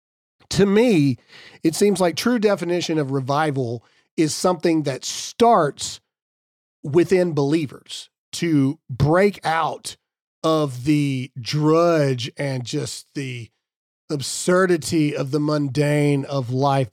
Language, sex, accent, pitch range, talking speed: English, male, American, 150-200 Hz, 105 wpm